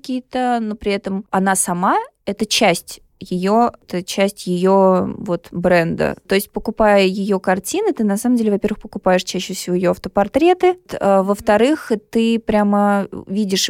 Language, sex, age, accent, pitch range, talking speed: Russian, female, 20-39, native, 190-225 Hz, 150 wpm